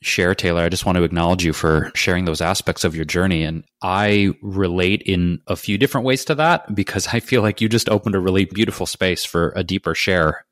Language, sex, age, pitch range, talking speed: English, male, 20-39, 90-115 Hz, 230 wpm